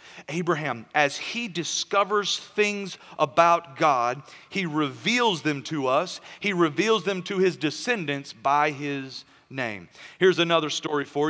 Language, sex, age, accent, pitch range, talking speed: English, male, 40-59, American, 165-215 Hz, 135 wpm